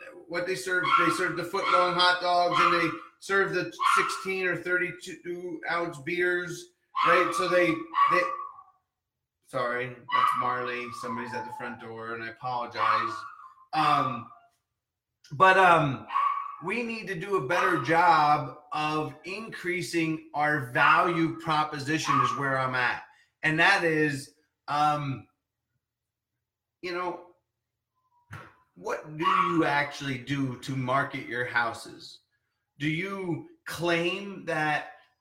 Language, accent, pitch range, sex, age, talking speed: English, American, 145-185 Hz, male, 30-49, 125 wpm